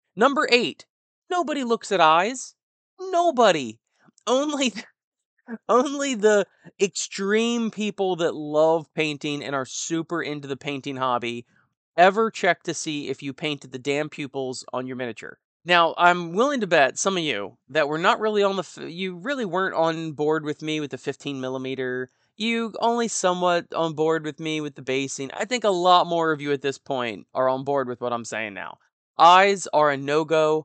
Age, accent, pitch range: 30-49, American, 140-210 Hz